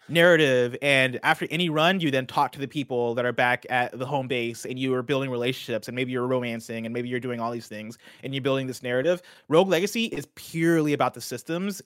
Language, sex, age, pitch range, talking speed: English, male, 20-39, 120-150 Hz, 235 wpm